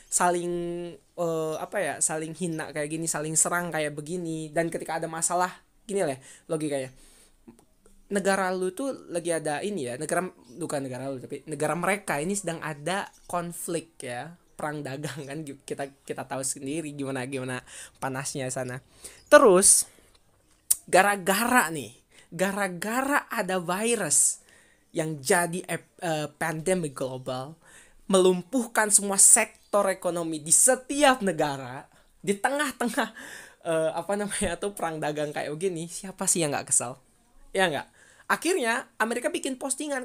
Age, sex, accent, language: 20-39, male, native, Indonesian